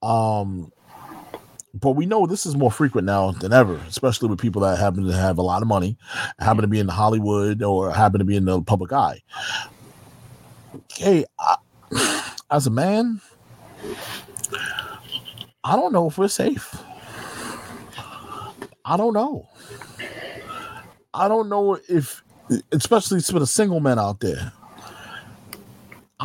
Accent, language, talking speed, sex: American, English, 140 wpm, male